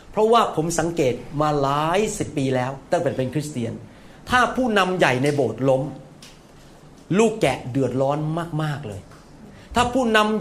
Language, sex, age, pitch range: Thai, male, 30-49, 150-215 Hz